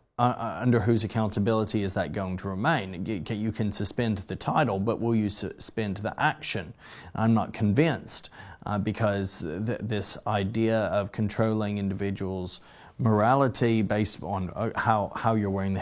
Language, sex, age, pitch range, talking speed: English, male, 20-39, 95-115 Hz, 150 wpm